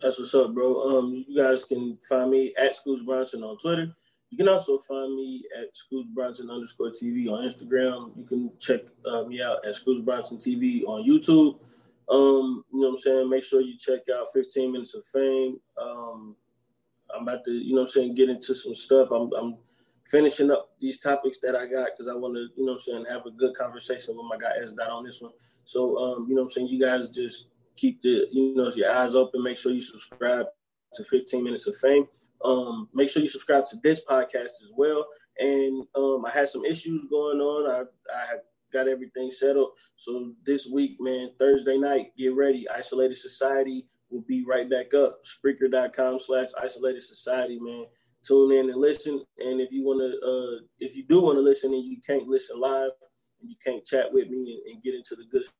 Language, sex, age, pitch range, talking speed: English, male, 20-39, 125-140 Hz, 215 wpm